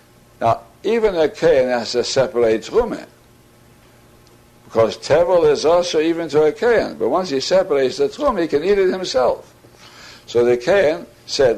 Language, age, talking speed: English, 60-79, 160 wpm